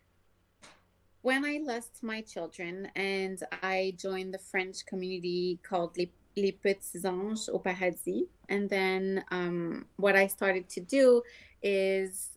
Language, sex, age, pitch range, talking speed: English, female, 20-39, 180-210 Hz, 130 wpm